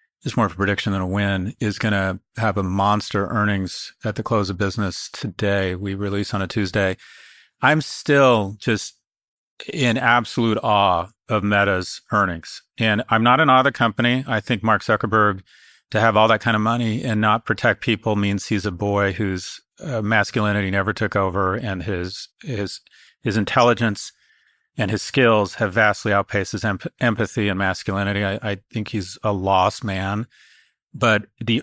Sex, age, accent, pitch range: male, 40-59, American, 100-120 Hz